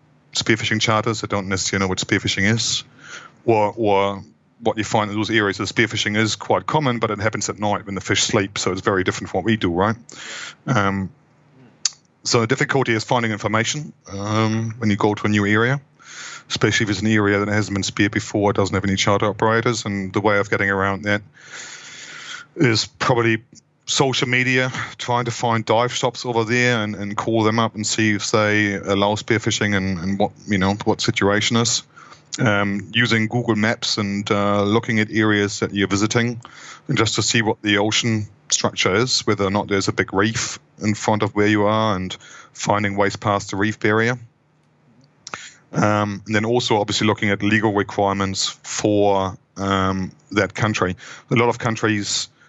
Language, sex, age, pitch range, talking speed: English, male, 30-49, 100-115 Hz, 190 wpm